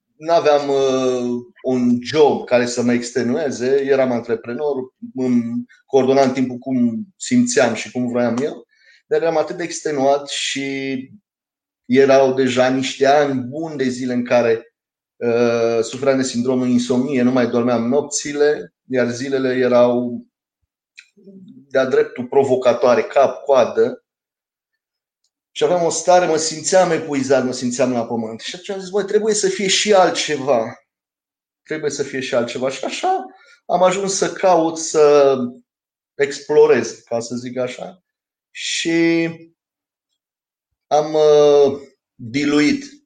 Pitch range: 125-170 Hz